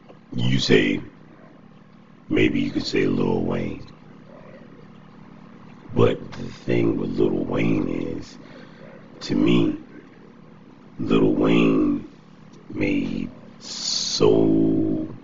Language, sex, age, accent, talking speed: English, male, 60-79, American, 85 wpm